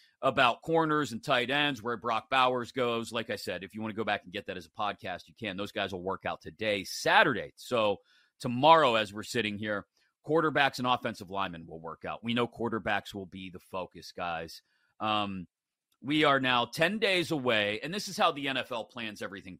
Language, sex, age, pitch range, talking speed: English, male, 30-49, 110-145 Hz, 210 wpm